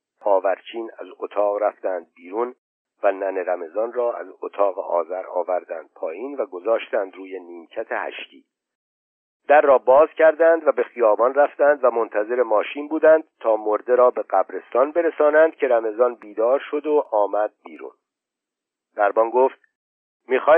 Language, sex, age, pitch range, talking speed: Persian, male, 50-69, 115-165 Hz, 135 wpm